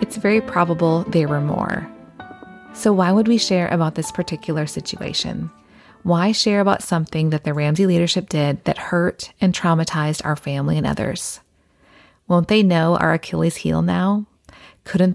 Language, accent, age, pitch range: English, American, 30-49, 155-195 Hz